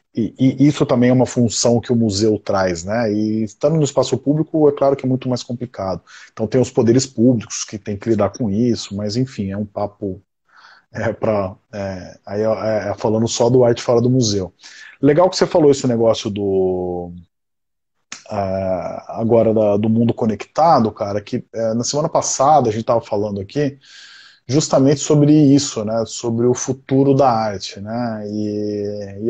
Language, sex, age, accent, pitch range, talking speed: Portuguese, male, 20-39, Brazilian, 105-130 Hz, 180 wpm